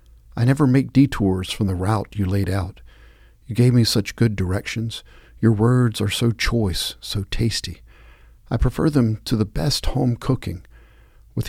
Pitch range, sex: 95-120 Hz, male